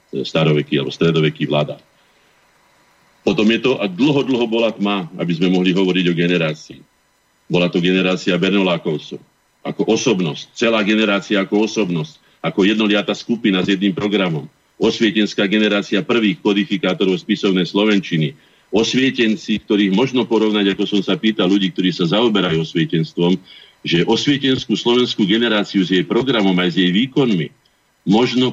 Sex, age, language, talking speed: male, 50-69, Slovak, 135 wpm